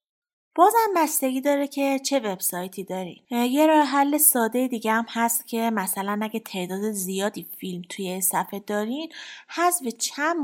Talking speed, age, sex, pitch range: 145 wpm, 20-39, female, 205-245 Hz